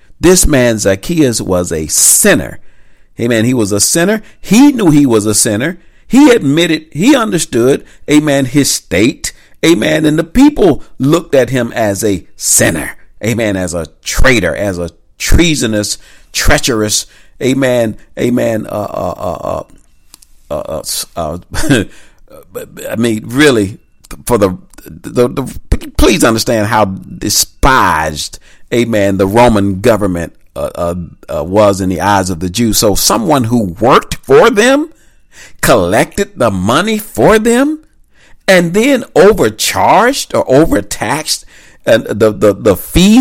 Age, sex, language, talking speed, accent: 50-69, male, English, 135 wpm, American